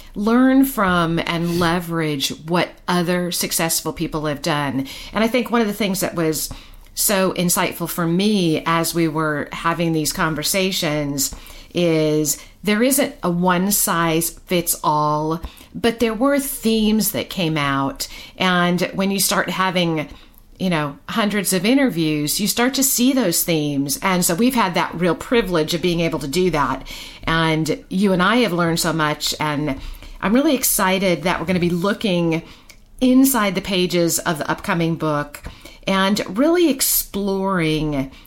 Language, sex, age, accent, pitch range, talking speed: English, female, 50-69, American, 160-210 Hz, 155 wpm